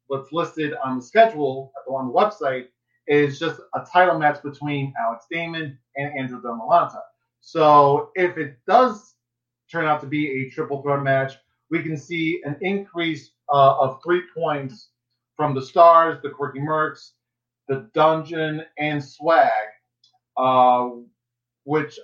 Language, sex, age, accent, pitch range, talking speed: English, male, 30-49, American, 130-155 Hz, 140 wpm